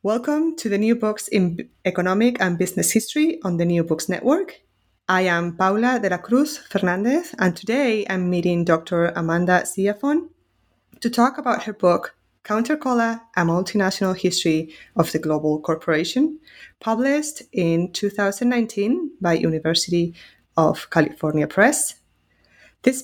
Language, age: English, 20-39